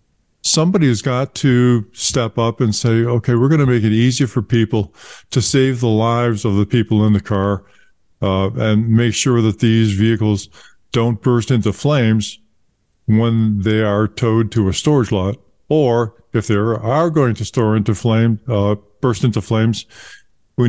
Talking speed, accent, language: 170 wpm, American, English